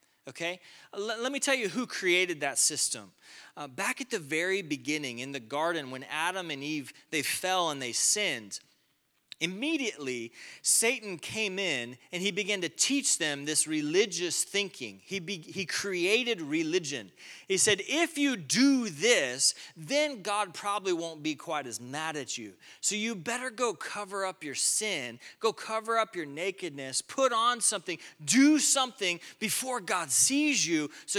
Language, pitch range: English, 145-230 Hz